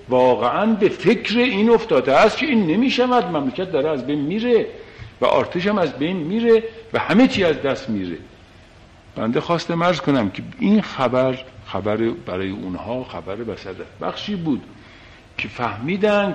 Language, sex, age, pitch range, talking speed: Persian, male, 50-69, 115-180 Hz, 160 wpm